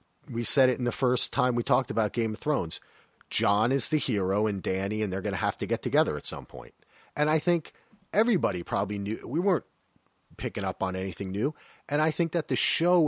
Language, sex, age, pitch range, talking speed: English, male, 40-59, 95-125 Hz, 225 wpm